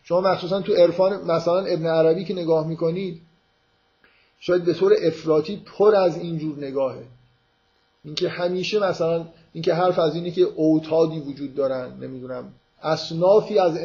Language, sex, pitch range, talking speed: Persian, male, 150-185 Hz, 140 wpm